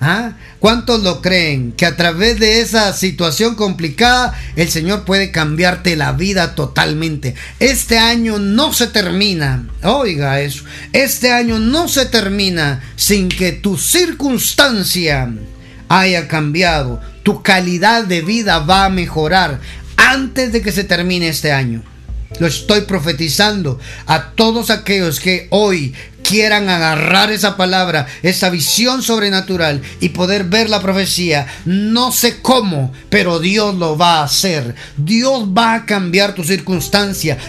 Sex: male